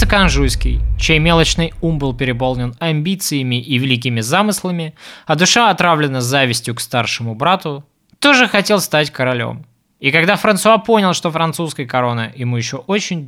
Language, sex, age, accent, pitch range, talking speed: Russian, male, 20-39, native, 130-200 Hz, 140 wpm